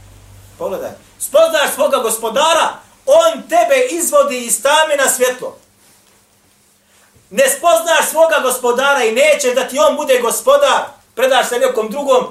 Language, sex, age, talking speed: English, male, 40-59, 120 wpm